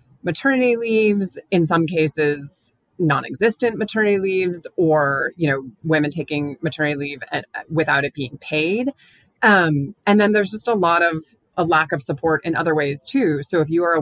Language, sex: English, female